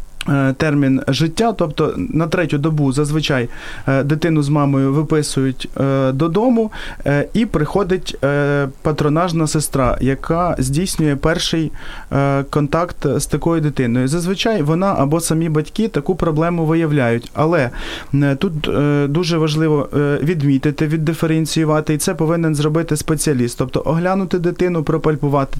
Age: 30-49